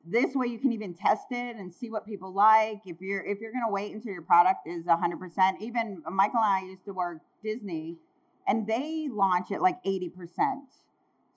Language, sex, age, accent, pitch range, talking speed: English, female, 40-59, American, 200-265 Hz, 200 wpm